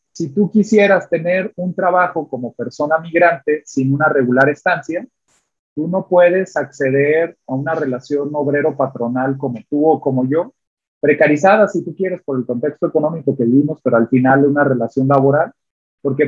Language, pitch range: Spanish, 130-180 Hz